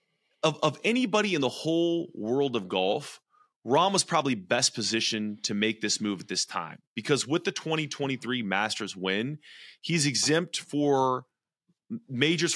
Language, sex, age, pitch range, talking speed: English, male, 30-49, 100-140 Hz, 150 wpm